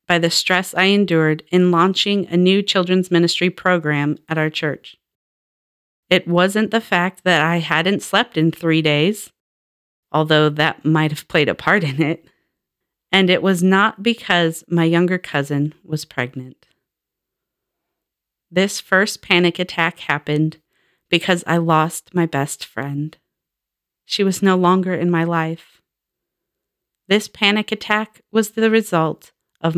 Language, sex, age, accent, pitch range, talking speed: English, female, 40-59, American, 160-200 Hz, 140 wpm